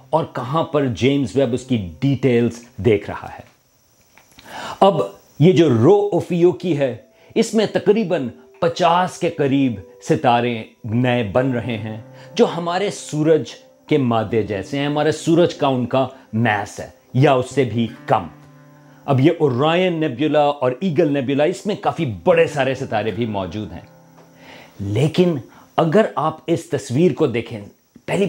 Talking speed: 150 wpm